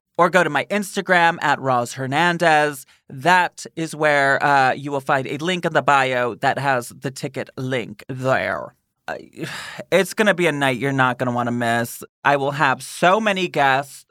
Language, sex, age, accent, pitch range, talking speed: English, male, 30-49, American, 135-170 Hz, 190 wpm